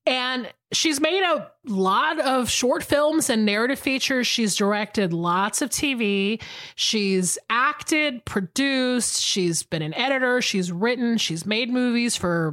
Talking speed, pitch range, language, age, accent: 140 wpm, 185-270 Hz, English, 30-49, American